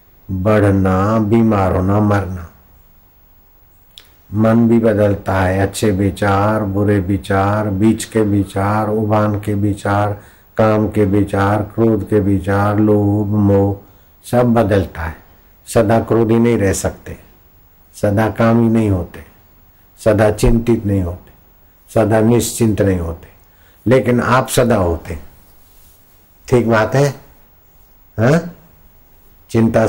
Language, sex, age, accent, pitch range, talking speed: Hindi, male, 60-79, native, 90-110 Hz, 110 wpm